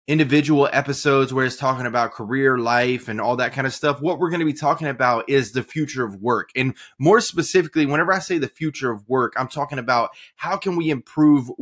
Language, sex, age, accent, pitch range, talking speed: English, male, 20-39, American, 125-155 Hz, 220 wpm